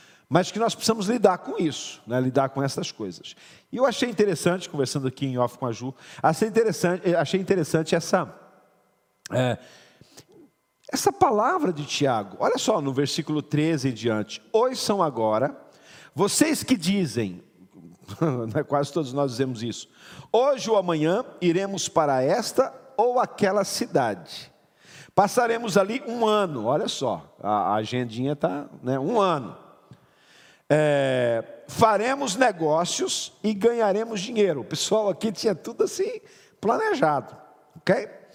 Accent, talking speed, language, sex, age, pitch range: Brazilian, 130 wpm, Portuguese, male, 50-69, 145-225 Hz